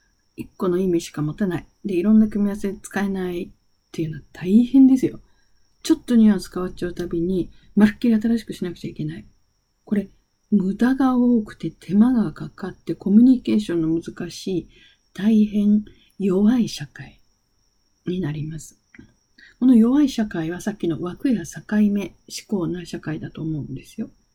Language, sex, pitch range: Japanese, female, 170-225 Hz